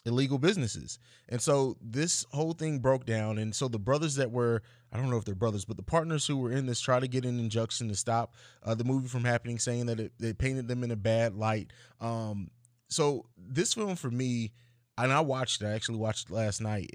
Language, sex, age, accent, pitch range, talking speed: English, male, 20-39, American, 115-135 Hz, 225 wpm